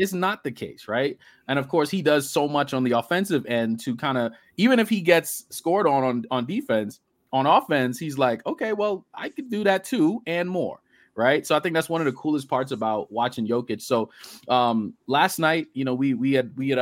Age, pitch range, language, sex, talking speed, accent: 20-39, 120-155 Hz, English, male, 230 wpm, American